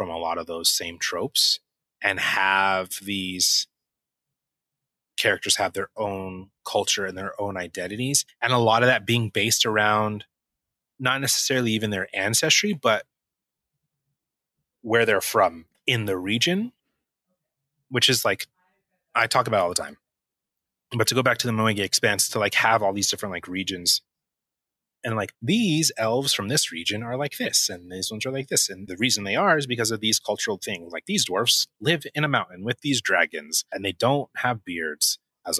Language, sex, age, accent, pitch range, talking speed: English, male, 30-49, American, 100-135 Hz, 180 wpm